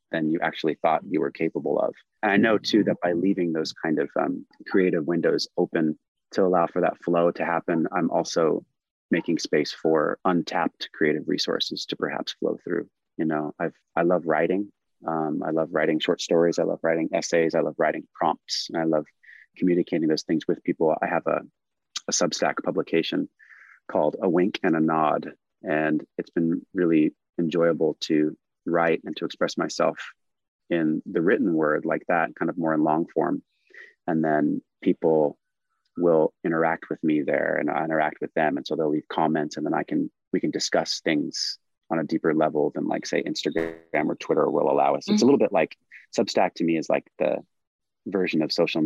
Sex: male